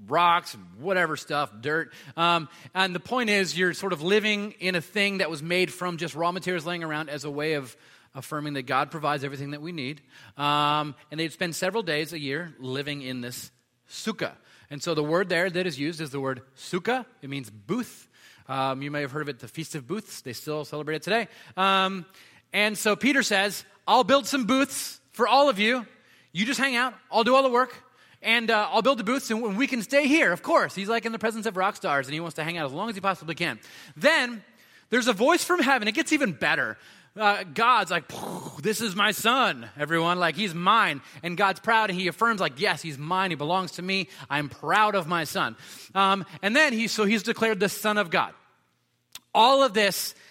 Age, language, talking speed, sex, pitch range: 30-49, English, 225 wpm, male, 150-220 Hz